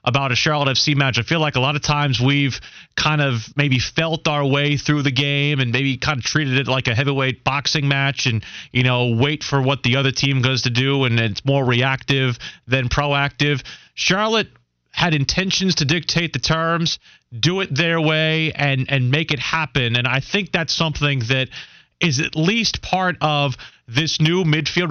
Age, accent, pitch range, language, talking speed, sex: 30-49, American, 130-160 Hz, English, 195 wpm, male